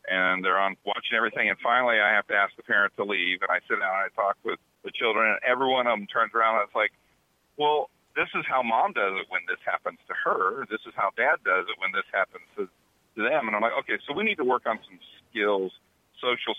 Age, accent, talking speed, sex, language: 40-59, American, 255 wpm, male, English